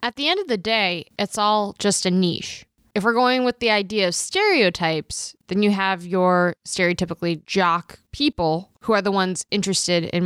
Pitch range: 170-210 Hz